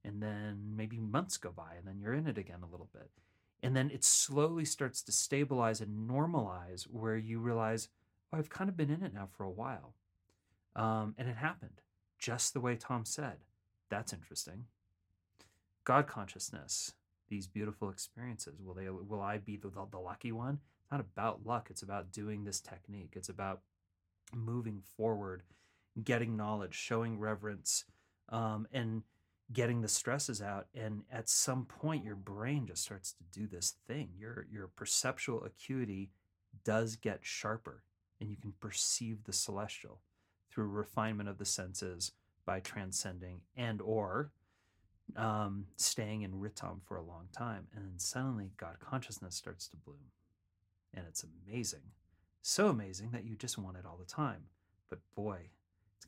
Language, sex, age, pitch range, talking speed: English, male, 30-49, 95-115 Hz, 165 wpm